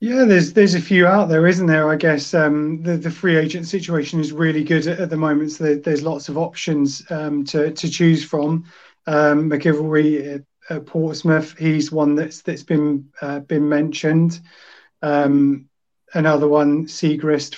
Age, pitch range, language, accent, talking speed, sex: 30-49, 145-165 Hz, English, British, 175 wpm, male